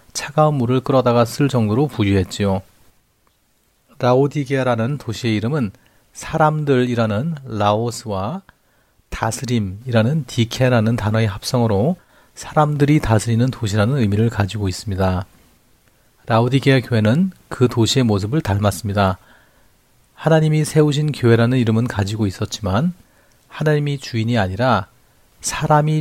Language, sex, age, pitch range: Korean, male, 40-59, 105-130 Hz